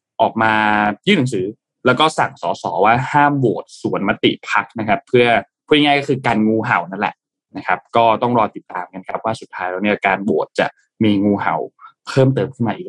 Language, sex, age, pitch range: Thai, male, 20-39, 105-130 Hz